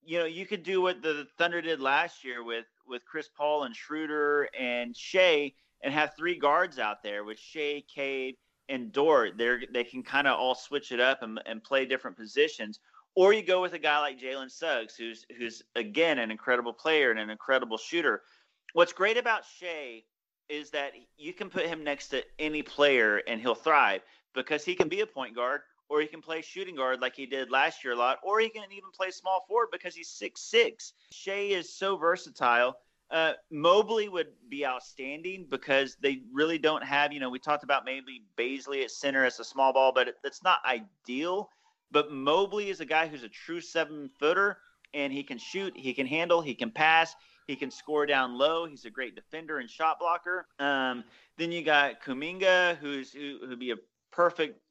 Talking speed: 200 wpm